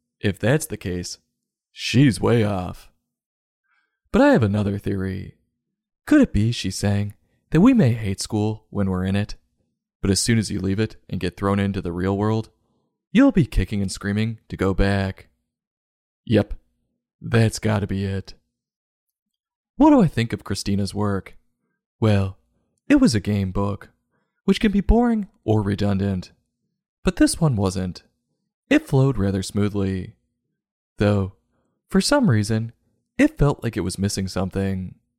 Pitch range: 95-115 Hz